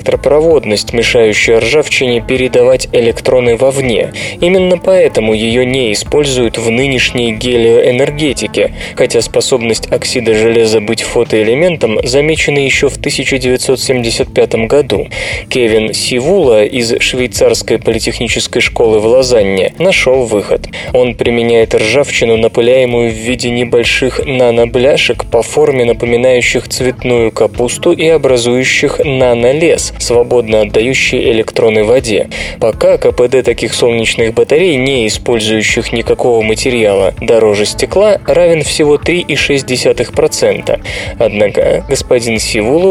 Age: 20-39